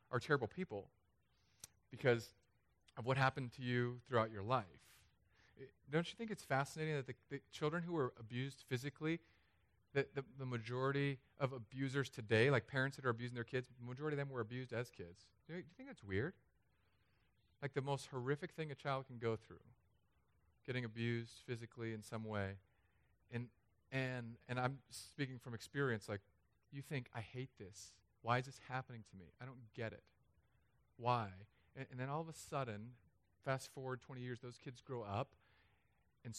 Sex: male